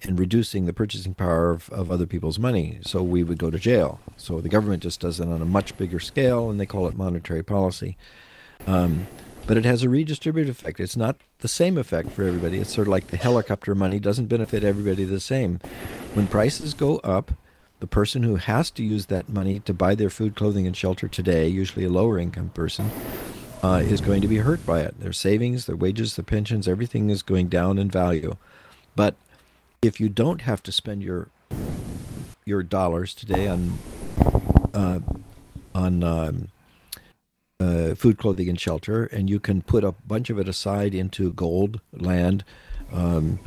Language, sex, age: English, male, 50-69